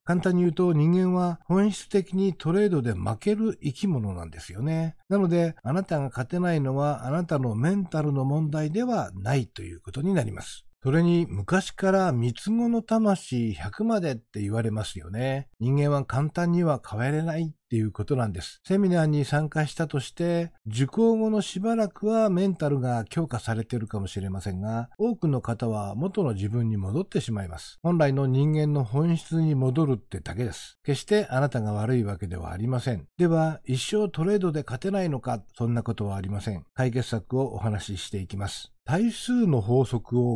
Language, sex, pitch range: Japanese, male, 115-185 Hz